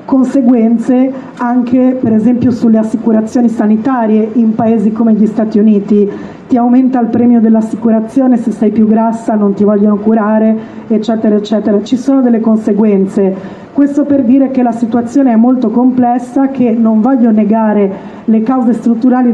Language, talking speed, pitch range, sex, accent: Italian, 150 wpm, 220-255 Hz, female, native